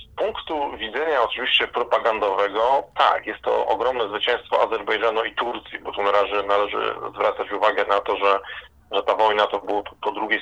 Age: 30-49